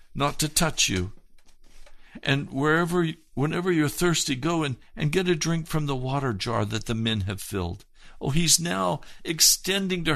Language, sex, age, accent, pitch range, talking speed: English, male, 60-79, American, 95-155 Hz, 170 wpm